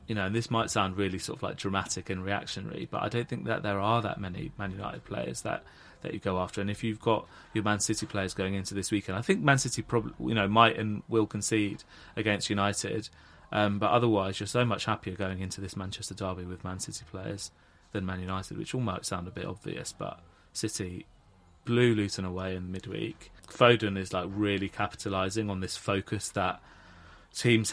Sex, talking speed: male, 210 wpm